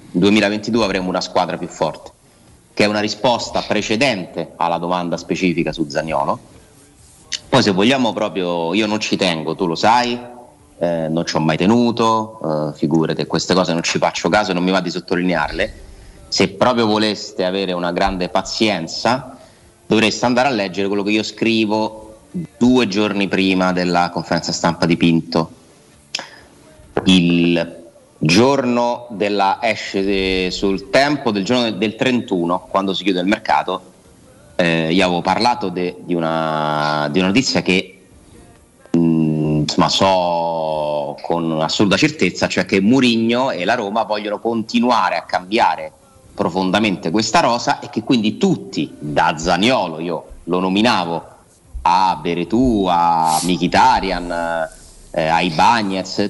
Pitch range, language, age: 85-105 Hz, Italian, 30-49